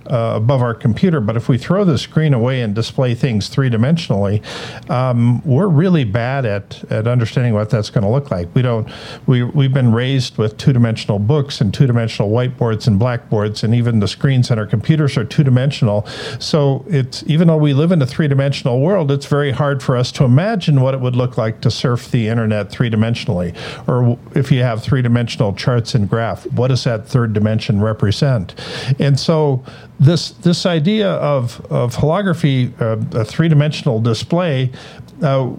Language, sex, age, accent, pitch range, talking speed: English, male, 50-69, American, 115-145 Hz, 190 wpm